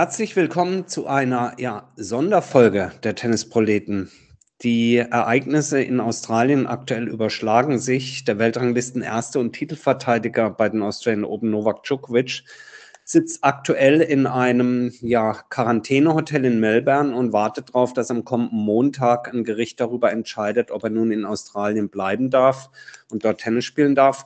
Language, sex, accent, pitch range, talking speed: German, male, German, 110-135 Hz, 140 wpm